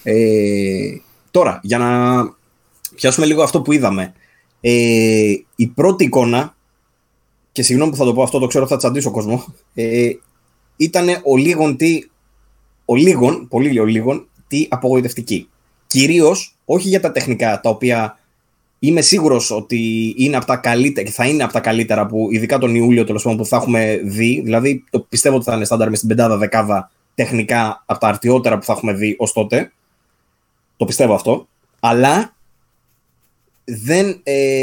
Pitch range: 115-150 Hz